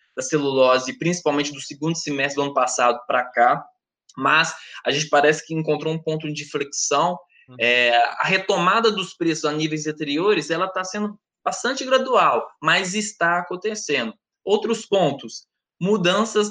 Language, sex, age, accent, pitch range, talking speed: Portuguese, male, 20-39, Brazilian, 150-185 Hz, 140 wpm